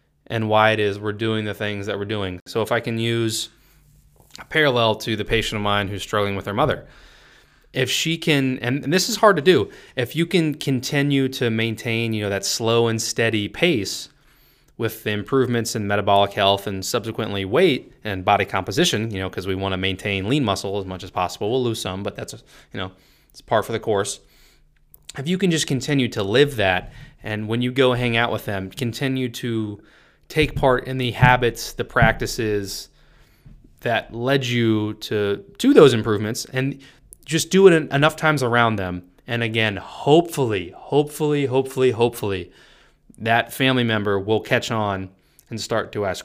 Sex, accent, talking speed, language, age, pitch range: male, American, 190 wpm, English, 20-39, 105-135 Hz